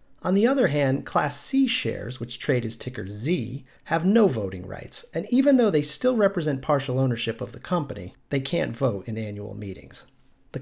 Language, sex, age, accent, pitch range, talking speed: English, male, 40-59, American, 115-175 Hz, 190 wpm